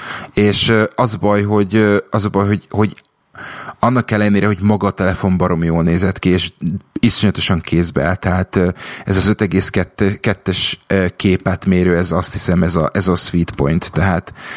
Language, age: Hungarian, 30-49